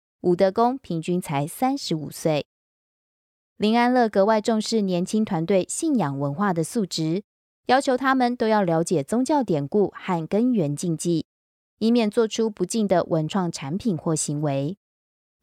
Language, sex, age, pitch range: Chinese, female, 20-39, 170-230 Hz